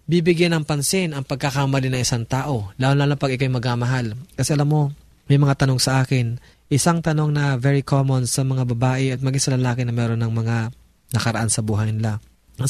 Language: Filipino